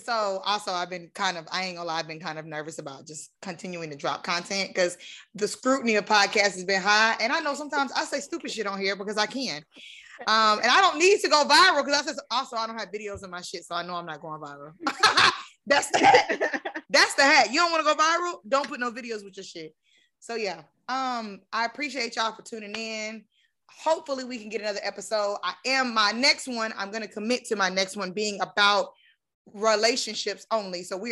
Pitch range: 175-225 Hz